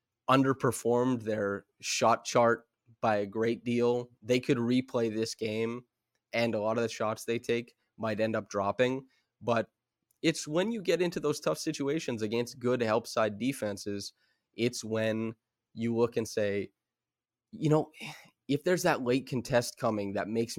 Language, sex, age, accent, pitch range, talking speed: English, male, 20-39, American, 105-125 Hz, 160 wpm